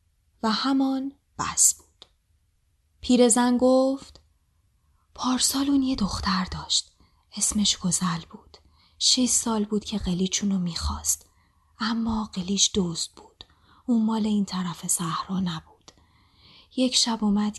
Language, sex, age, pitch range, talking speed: Persian, female, 20-39, 175-235 Hz, 115 wpm